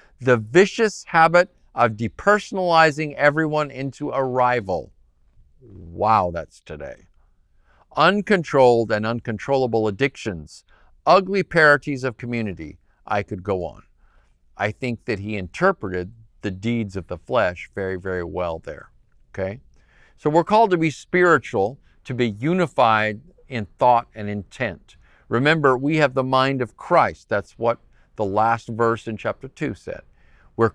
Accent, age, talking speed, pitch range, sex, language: American, 50-69, 135 wpm, 100-130 Hz, male, English